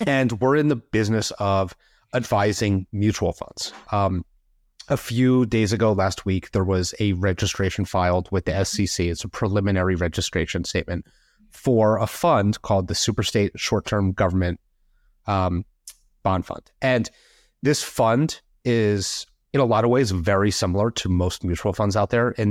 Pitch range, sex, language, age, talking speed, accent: 95-110 Hz, male, English, 30-49, 155 wpm, American